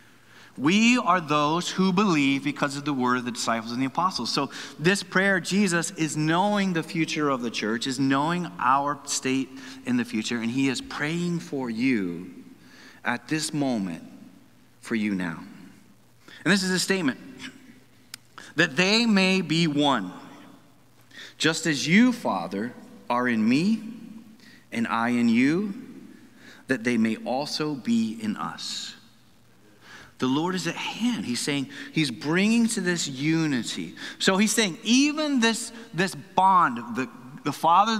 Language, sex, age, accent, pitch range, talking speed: English, male, 30-49, American, 145-230 Hz, 150 wpm